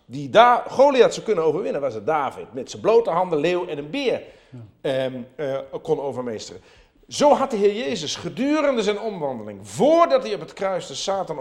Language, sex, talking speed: Dutch, male, 190 wpm